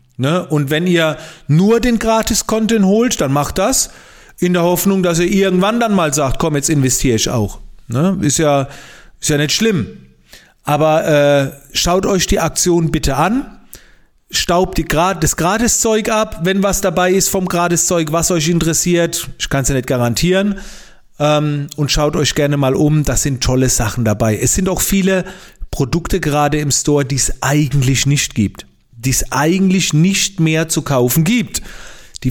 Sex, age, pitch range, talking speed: male, 40-59, 140-190 Hz, 165 wpm